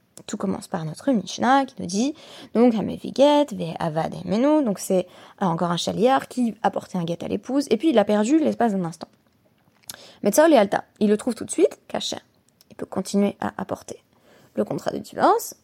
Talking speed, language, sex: 185 wpm, French, female